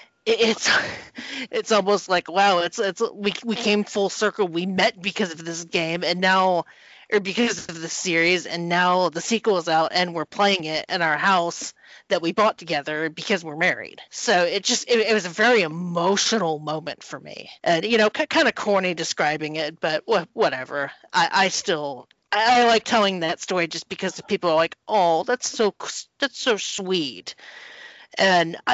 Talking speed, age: 185 wpm, 30-49